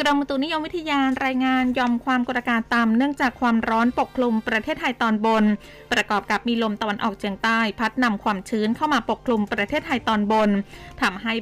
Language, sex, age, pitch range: Thai, female, 20-39, 210-255 Hz